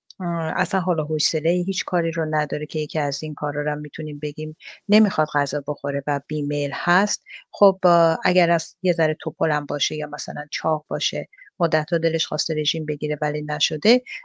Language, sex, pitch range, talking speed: English, female, 160-190 Hz, 175 wpm